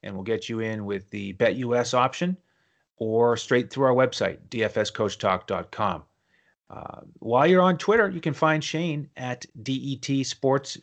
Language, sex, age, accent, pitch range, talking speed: English, male, 30-49, American, 110-140 Hz, 145 wpm